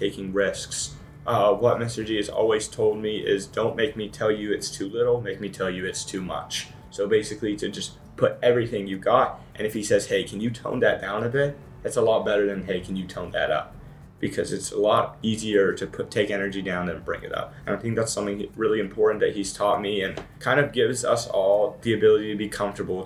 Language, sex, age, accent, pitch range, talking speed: English, male, 20-39, American, 100-120 Hz, 240 wpm